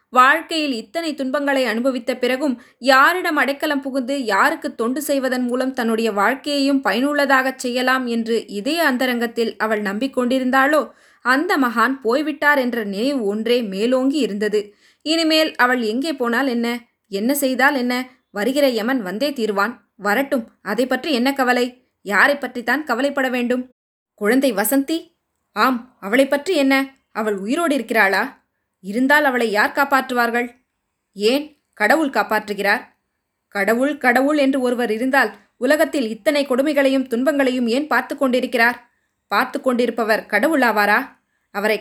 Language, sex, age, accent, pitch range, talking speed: Tamil, female, 20-39, native, 230-280 Hz, 120 wpm